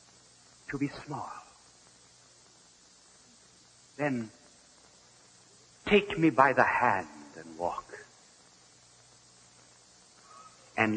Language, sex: English, male